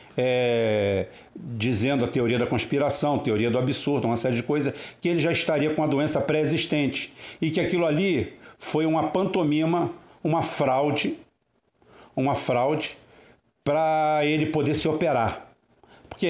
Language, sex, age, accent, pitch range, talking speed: Portuguese, male, 60-79, Brazilian, 125-165 Hz, 145 wpm